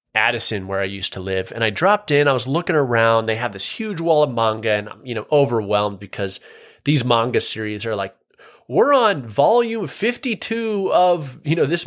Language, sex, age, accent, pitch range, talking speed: English, male, 30-49, American, 105-140 Hz, 200 wpm